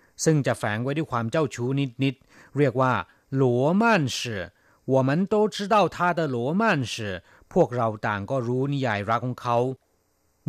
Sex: male